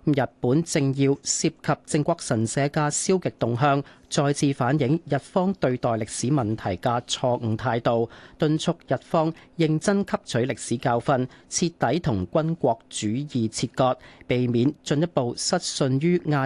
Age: 40-59